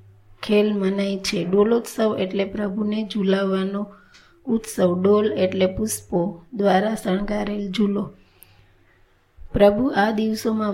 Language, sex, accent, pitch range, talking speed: Gujarati, female, native, 195-220 Hz, 90 wpm